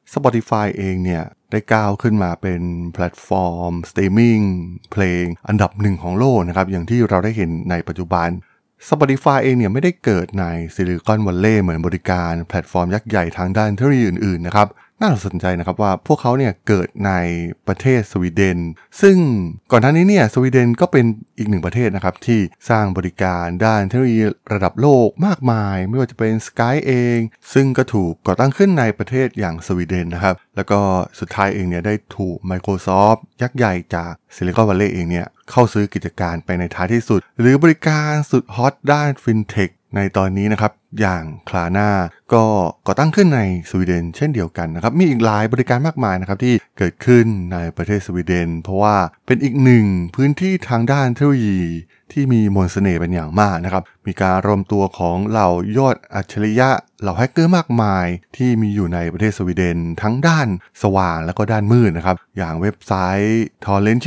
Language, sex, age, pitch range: Thai, male, 20-39, 90-120 Hz